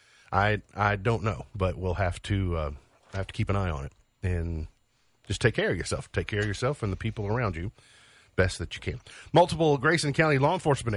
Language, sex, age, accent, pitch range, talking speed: English, male, 50-69, American, 95-130 Hz, 220 wpm